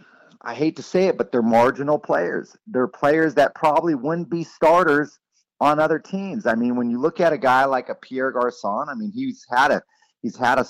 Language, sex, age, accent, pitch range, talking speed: English, male, 30-49, American, 120-155 Hz, 210 wpm